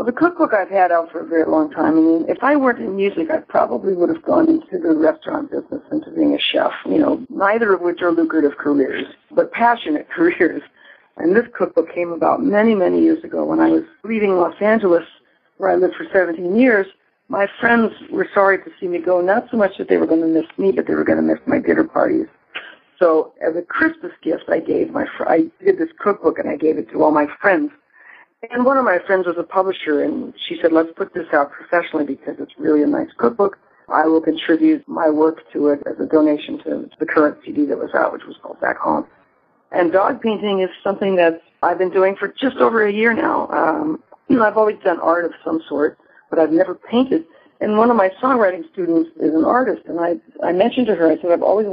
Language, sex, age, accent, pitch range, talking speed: English, female, 50-69, American, 165-275 Hz, 235 wpm